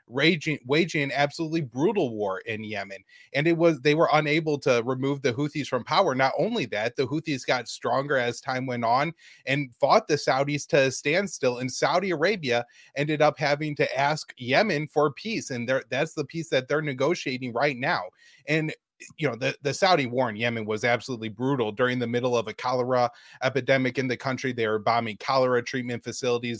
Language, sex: English, male